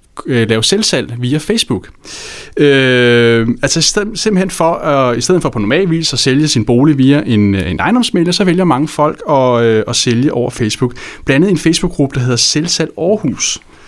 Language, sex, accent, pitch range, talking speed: Danish, male, native, 125-170 Hz, 170 wpm